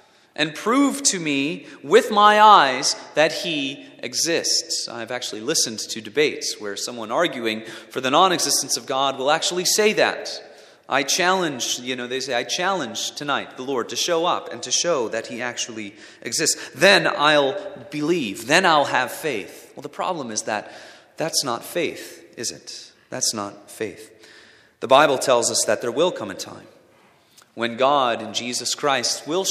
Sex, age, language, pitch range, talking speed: male, 30-49, English, 120-185 Hz, 170 wpm